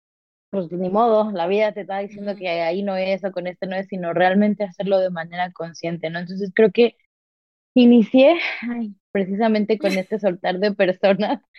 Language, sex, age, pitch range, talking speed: Spanish, female, 20-39, 175-210 Hz, 175 wpm